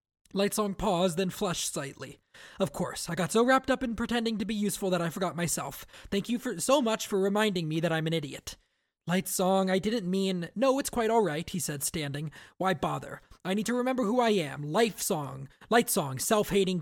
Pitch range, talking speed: 165-215 Hz, 195 wpm